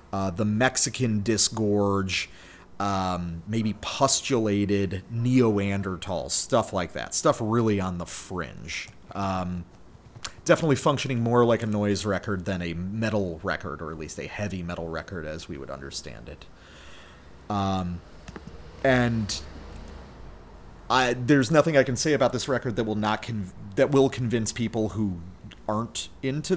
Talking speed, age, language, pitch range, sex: 140 wpm, 30-49, English, 90-115 Hz, male